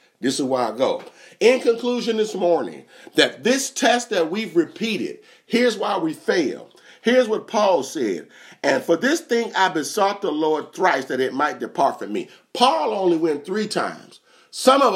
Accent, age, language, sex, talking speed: American, 40-59, English, male, 180 wpm